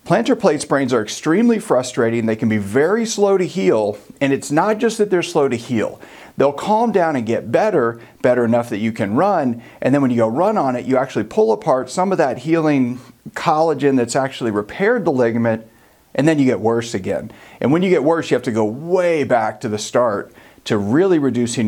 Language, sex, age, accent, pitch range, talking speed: English, male, 40-59, American, 115-170 Hz, 220 wpm